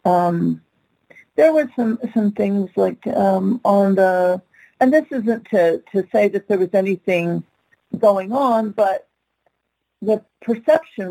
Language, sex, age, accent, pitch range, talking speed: English, female, 50-69, American, 170-215 Hz, 135 wpm